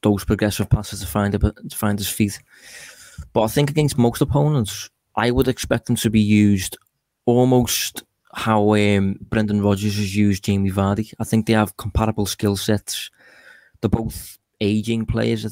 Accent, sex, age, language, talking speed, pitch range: British, male, 20-39, English, 170 wpm, 100-115 Hz